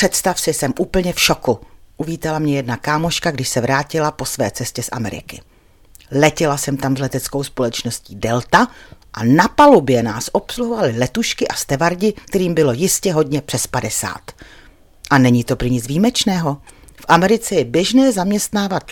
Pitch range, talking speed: 125-195 Hz, 160 wpm